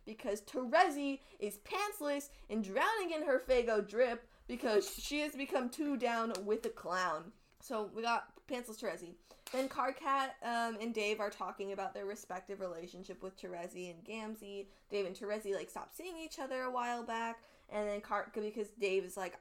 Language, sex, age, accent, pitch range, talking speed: English, female, 20-39, American, 200-280 Hz, 175 wpm